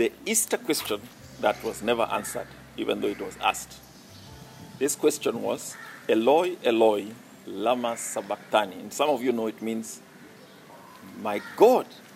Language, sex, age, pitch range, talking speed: English, male, 50-69, 110-155 Hz, 140 wpm